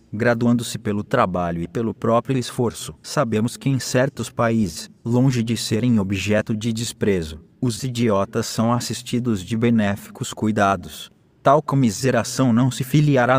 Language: Portuguese